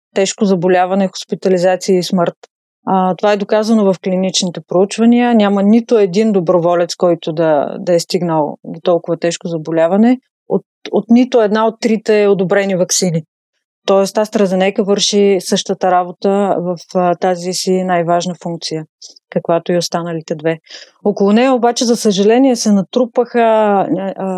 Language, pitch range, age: Bulgarian, 185-225 Hz, 30-49